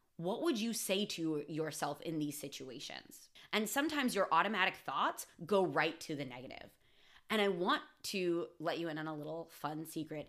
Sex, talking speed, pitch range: female, 180 wpm, 155-200 Hz